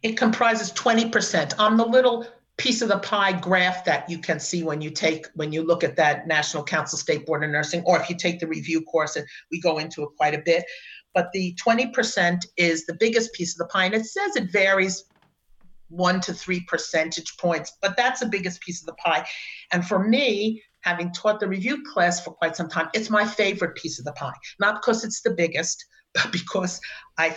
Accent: American